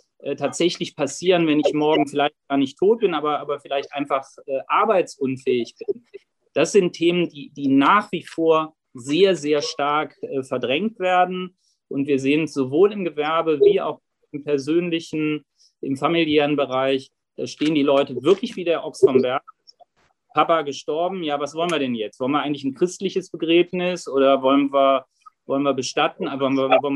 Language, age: German, 30-49